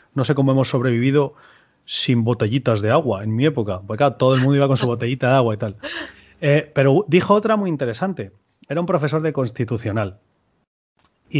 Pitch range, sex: 120-170 Hz, male